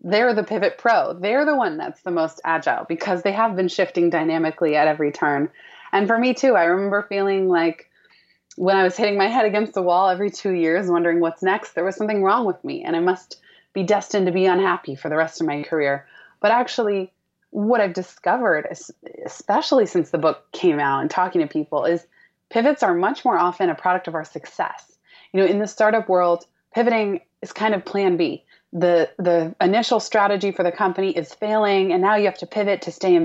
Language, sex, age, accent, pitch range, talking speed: English, female, 20-39, American, 170-215 Hz, 215 wpm